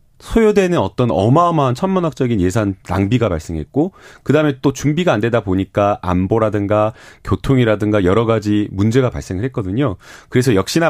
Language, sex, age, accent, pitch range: Korean, male, 30-49, native, 105-150 Hz